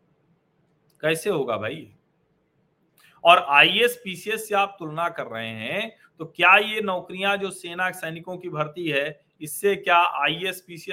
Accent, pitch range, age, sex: native, 150-180 Hz, 40-59, male